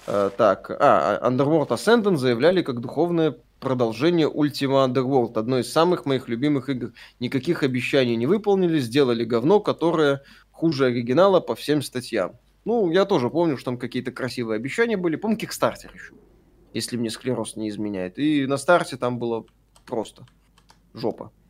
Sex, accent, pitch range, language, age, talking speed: male, native, 125-160 Hz, Russian, 20-39, 150 wpm